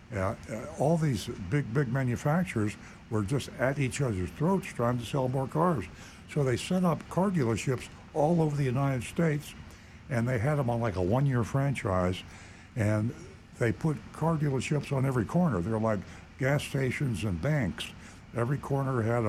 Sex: male